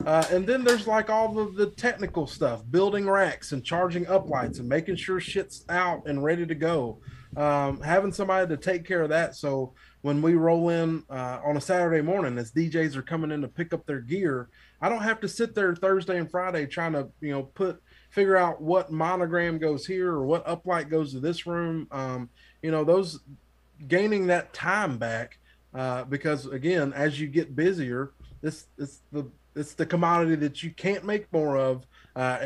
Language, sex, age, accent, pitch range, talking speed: English, male, 20-39, American, 135-175 Hz, 200 wpm